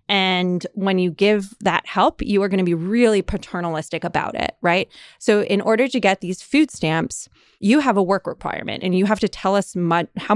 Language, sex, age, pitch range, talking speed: English, female, 20-39, 175-220 Hz, 210 wpm